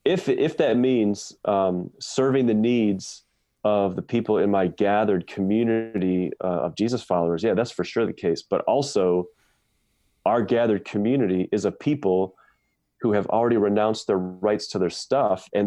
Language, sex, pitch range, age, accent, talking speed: English, male, 95-115 Hz, 30-49, American, 165 wpm